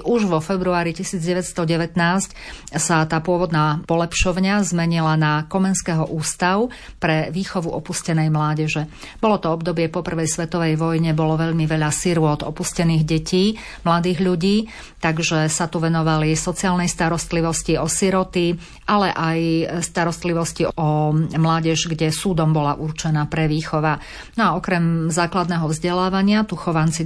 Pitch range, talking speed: 160-180 Hz, 125 wpm